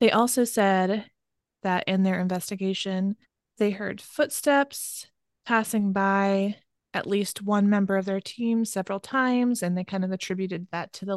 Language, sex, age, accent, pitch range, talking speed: English, female, 20-39, American, 190-225 Hz, 155 wpm